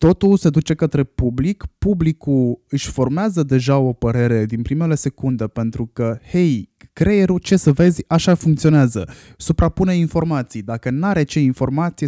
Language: Romanian